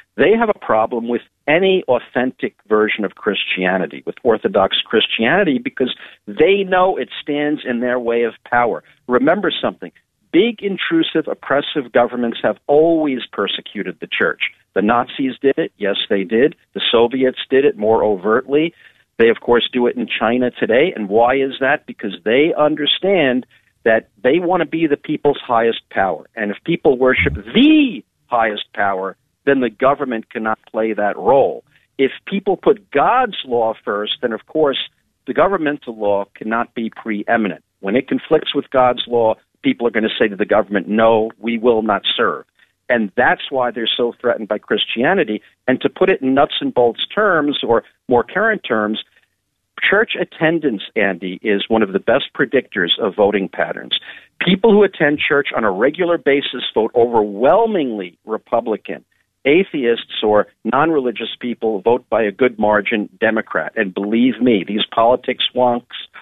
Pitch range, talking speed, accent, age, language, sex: 110-145 Hz, 160 wpm, American, 50-69, English, male